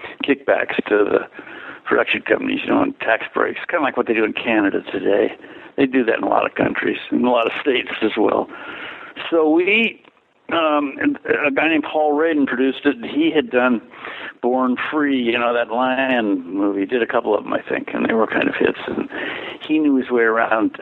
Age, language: 60-79, English